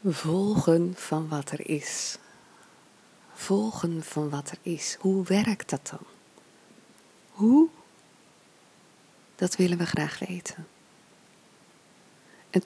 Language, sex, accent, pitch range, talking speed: Dutch, female, Dutch, 170-220 Hz, 100 wpm